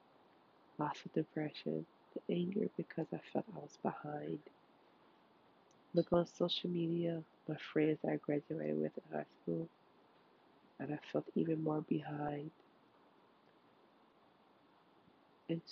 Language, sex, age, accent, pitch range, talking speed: English, female, 20-39, American, 150-175 Hz, 115 wpm